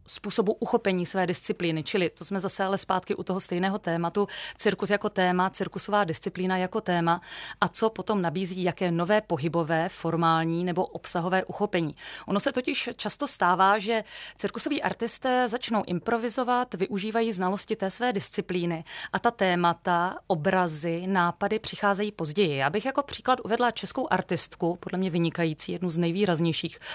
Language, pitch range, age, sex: Czech, 180-220 Hz, 30-49, female